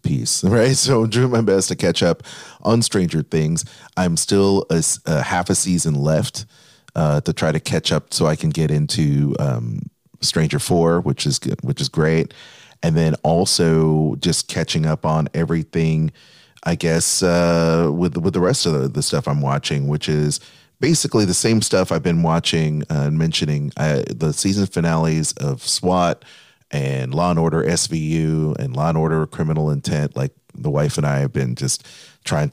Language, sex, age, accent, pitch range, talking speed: English, male, 30-49, American, 75-90 Hz, 185 wpm